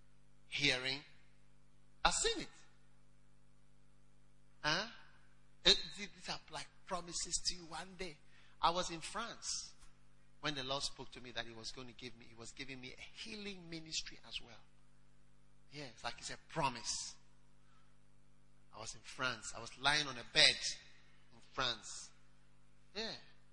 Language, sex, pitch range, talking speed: English, male, 135-200 Hz, 155 wpm